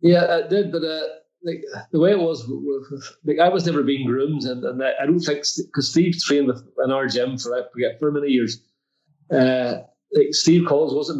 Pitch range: 130-155 Hz